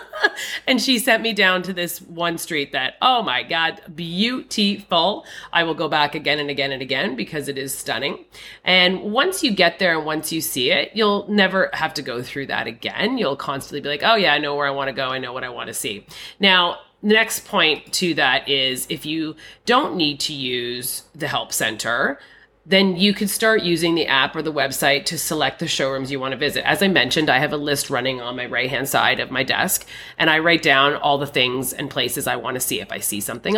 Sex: female